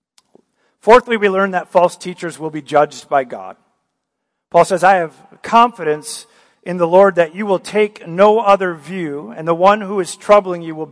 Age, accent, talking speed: 50-69, American, 185 wpm